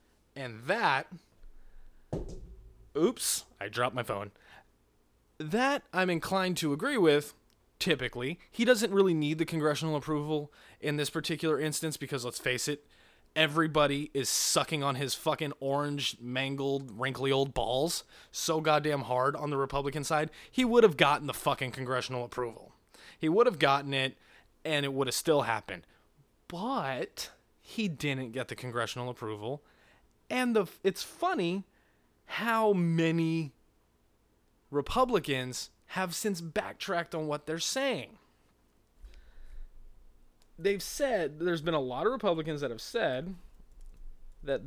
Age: 20-39